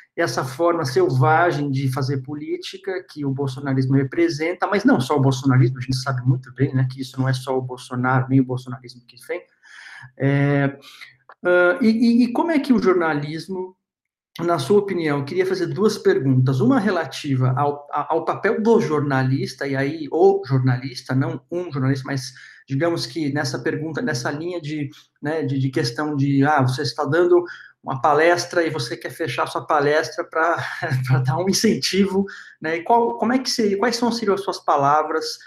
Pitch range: 135-185 Hz